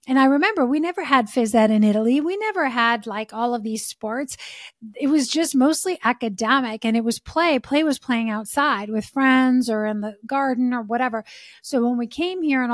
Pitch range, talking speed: 230-275 Hz, 210 wpm